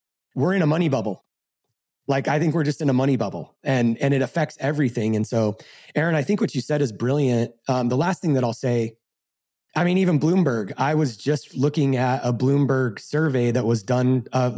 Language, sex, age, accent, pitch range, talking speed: English, male, 30-49, American, 125-155 Hz, 215 wpm